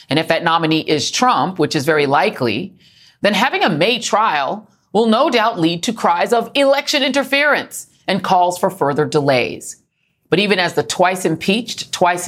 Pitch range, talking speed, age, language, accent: 155-210 Hz, 175 wpm, 40-59, English, American